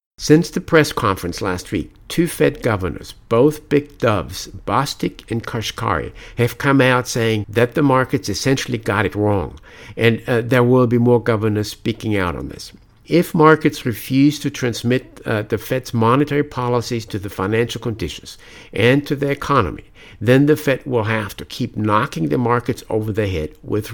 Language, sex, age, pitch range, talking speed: English, male, 60-79, 105-130 Hz, 175 wpm